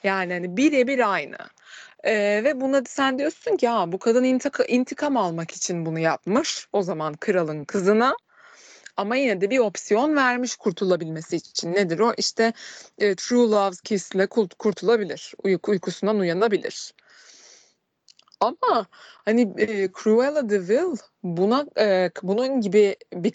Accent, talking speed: native, 140 wpm